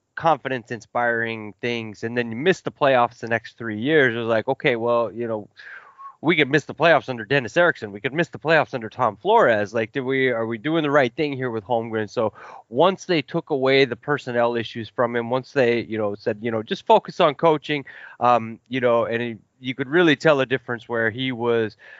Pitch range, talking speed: 110-135 Hz, 225 wpm